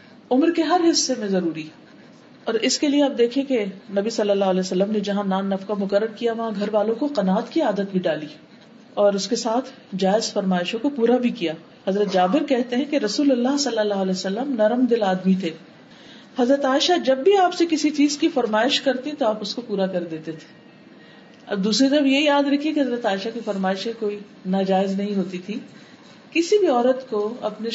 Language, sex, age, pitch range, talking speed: Urdu, female, 40-59, 200-265 Hz, 210 wpm